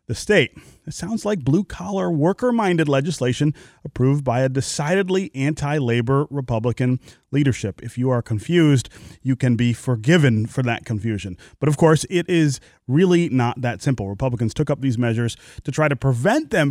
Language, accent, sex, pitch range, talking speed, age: English, American, male, 120-155 Hz, 160 wpm, 30-49